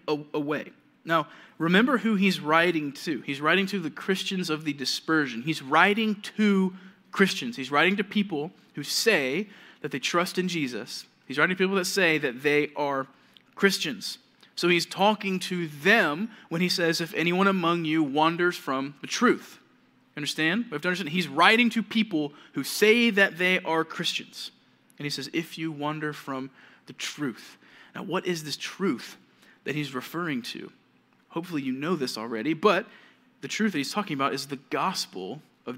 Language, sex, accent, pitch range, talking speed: English, male, American, 145-195 Hz, 175 wpm